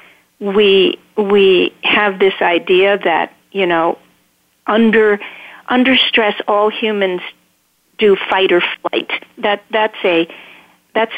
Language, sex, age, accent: English, female, 50-69, American